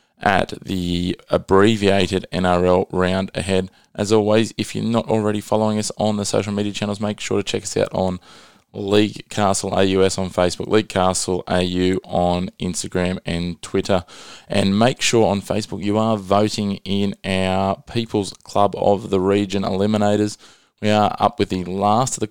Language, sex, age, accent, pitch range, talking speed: English, male, 20-39, Australian, 90-105 Hz, 165 wpm